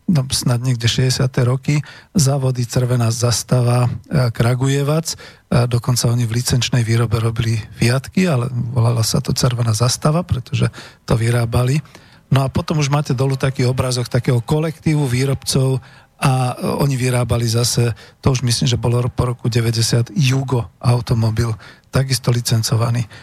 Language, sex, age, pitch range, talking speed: Slovak, male, 40-59, 120-135 Hz, 140 wpm